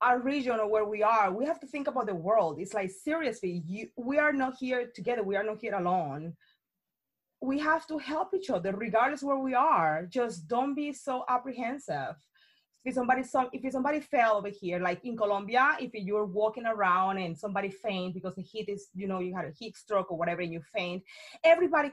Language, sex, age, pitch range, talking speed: English, female, 30-49, 205-295 Hz, 210 wpm